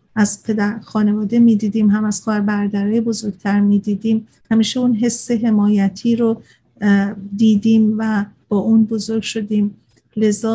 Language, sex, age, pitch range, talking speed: Persian, female, 50-69, 210-230 Hz, 130 wpm